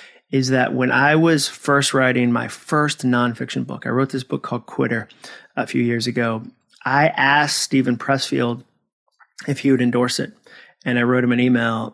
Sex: male